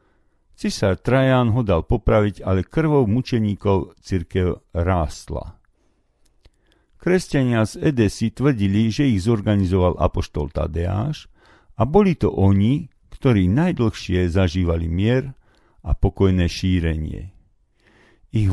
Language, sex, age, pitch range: Slovak, male, 50-69, 90-115 Hz